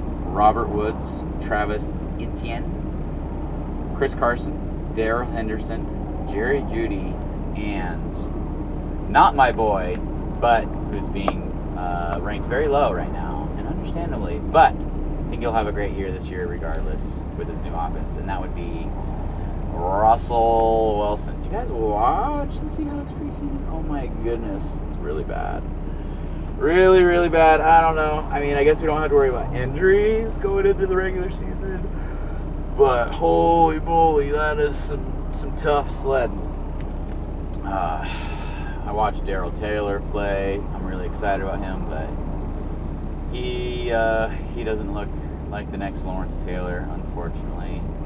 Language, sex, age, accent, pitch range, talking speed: English, male, 30-49, American, 75-100 Hz, 140 wpm